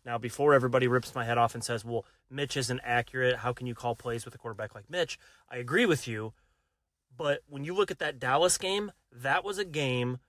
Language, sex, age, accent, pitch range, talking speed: English, male, 30-49, American, 120-140 Hz, 225 wpm